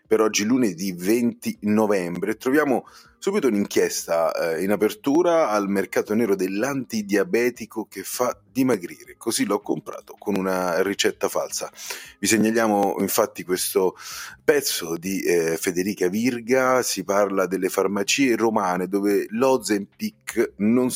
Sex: male